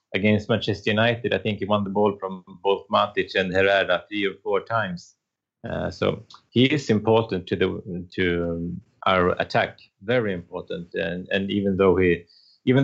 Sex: male